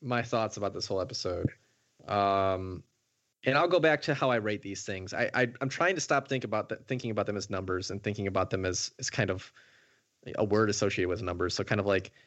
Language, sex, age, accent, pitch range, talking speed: English, male, 20-39, American, 105-125 Hz, 235 wpm